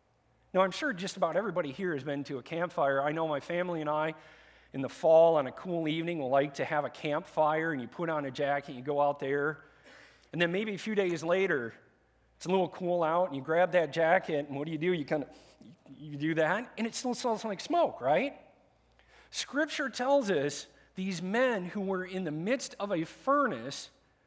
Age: 40-59